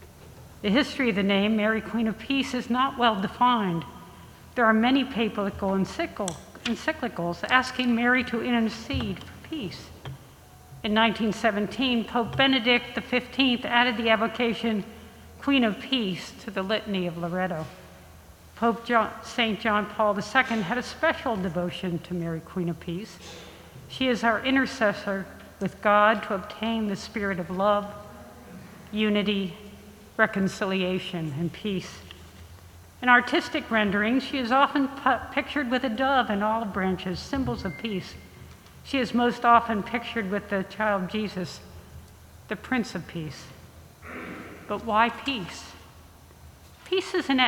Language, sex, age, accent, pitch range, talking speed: English, female, 60-79, American, 190-245 Hz, 135 wpm